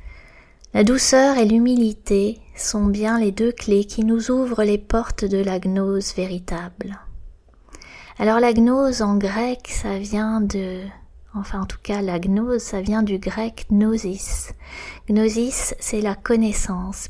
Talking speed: 145 wpm